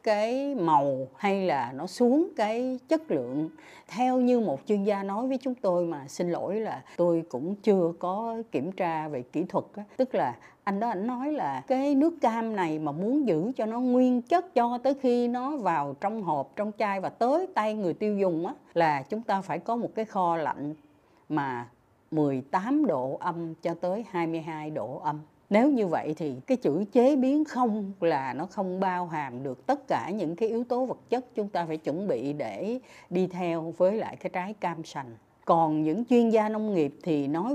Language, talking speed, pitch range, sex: Vietnamese, 205 wpm, 160-240 Hz, female